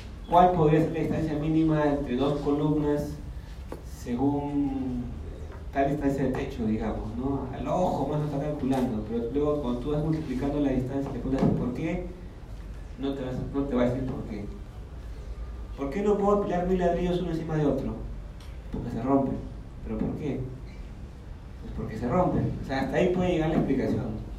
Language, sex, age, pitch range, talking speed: Spanish, male, 40-59, 115-160 Hz, 170 wpm